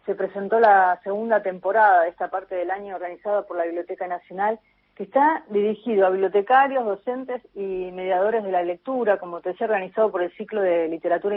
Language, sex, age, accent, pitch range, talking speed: Spanish, female, 30-49, Argentinian, 185-225 Hz, 185 wpm